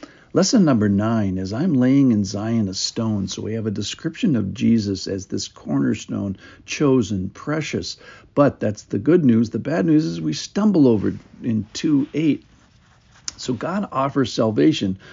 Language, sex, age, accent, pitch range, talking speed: English, male, 50-69, American, 95-135 Hz, 165 wpm